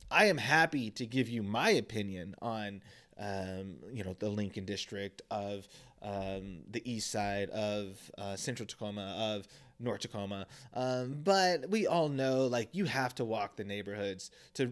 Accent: American